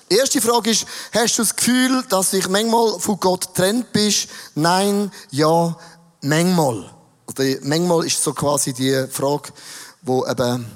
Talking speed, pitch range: 145 wpm, 150-205 Hz